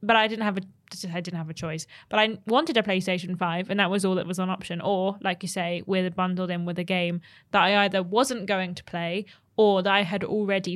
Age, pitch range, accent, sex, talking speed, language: 10-29, 185-230 Hz, British, female, 260 wpm, English